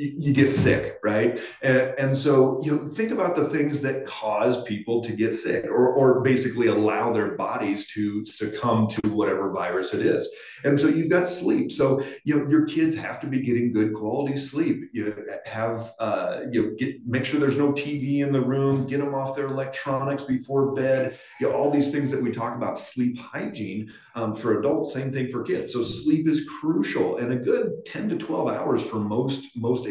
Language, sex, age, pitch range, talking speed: English, male, 30-49, 110-145 Hz, 205 wpm